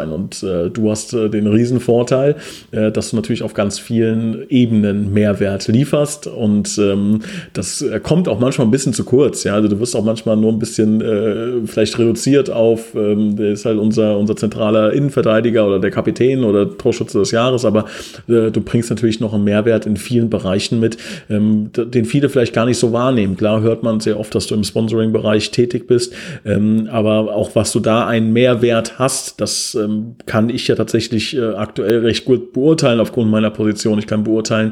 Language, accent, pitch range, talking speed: German, German, 110-125 Hz, 195 wpm